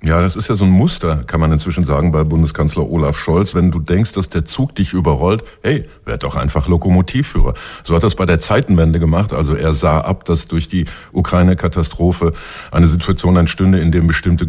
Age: 50-69